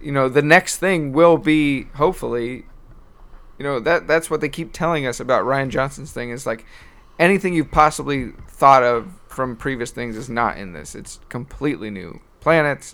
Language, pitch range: English, 120-155 Hz